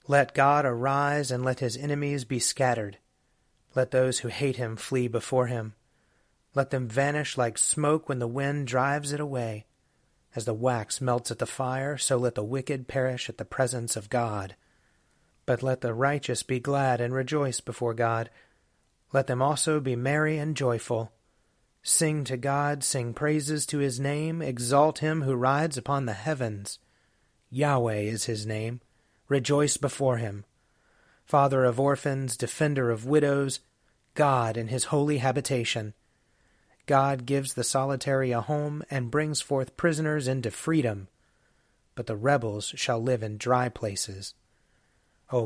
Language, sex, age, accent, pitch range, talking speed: English, male, 30-49, American, 115-140 Hz, 155 wpm